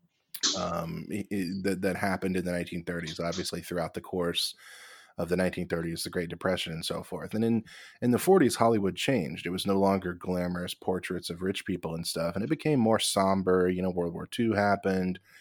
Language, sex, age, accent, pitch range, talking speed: English, male, 20-39, American, 90-100 Hz, 200 wpm